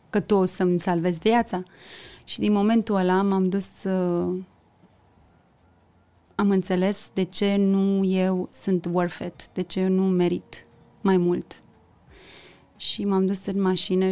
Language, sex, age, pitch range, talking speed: Romanian, female, 20-39, 180-205 Hz, 145 wpm